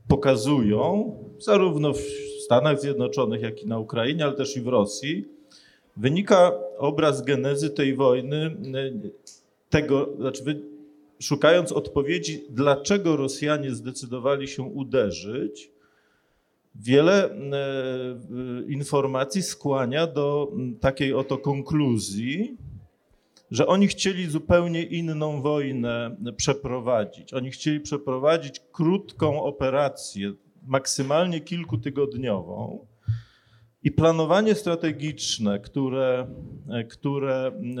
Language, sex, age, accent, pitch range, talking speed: Polish, male, 40-59, native, 130-155 Hz, 85 wpm